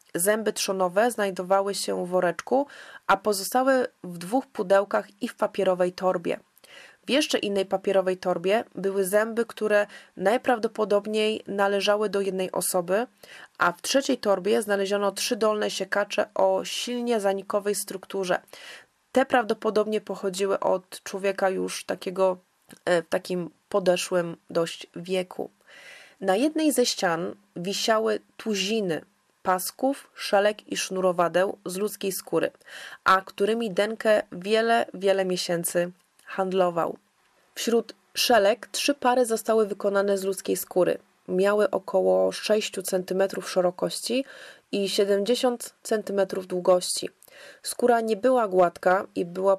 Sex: female